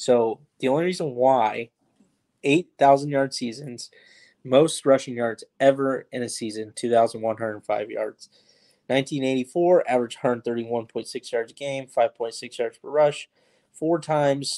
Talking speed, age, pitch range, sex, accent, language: 175 wpm, 20-39, 115-135 Hz, male, American, English